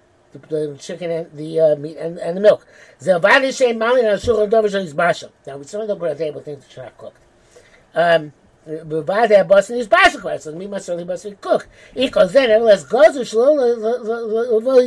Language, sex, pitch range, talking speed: English, male, 165-240 Hz, 95 wpm